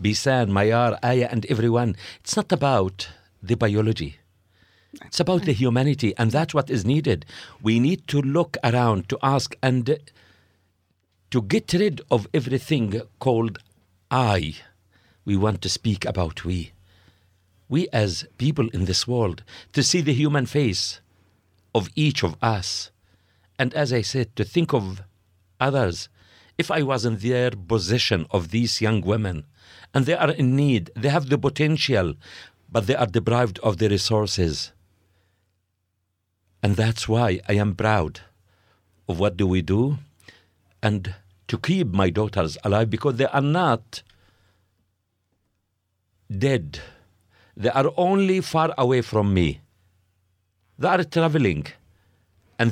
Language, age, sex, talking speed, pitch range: English, 50-69, male, 140 wpm, 95-130 Hz